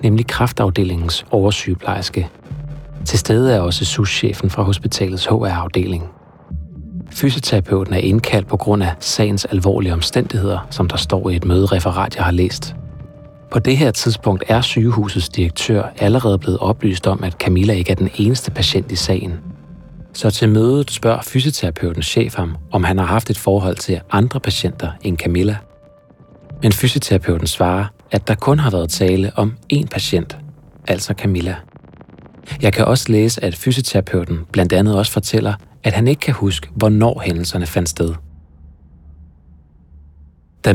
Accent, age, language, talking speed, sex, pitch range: native, 30-49, Danish, 150 wpm, male, 90-120 Hz